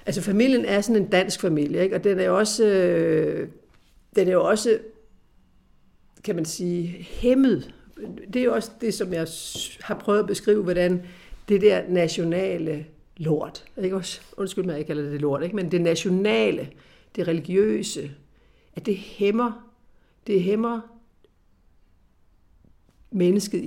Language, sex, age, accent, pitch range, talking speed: Danish, female, 60-79, native, 155-205 Hz, 145 wpm